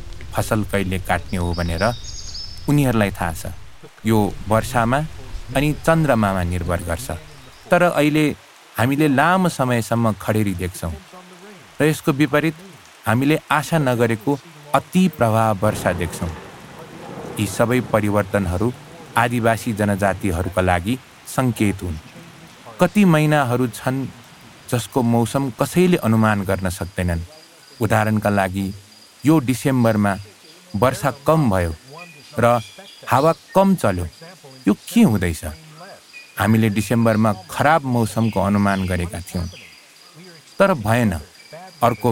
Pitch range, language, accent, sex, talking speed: 100-145 Hz, English, Indian, male, 105 wpm